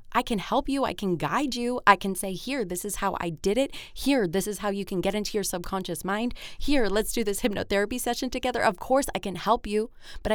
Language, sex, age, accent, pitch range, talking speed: English, female, 20-39, American, 155-205 Hz, 250 wpm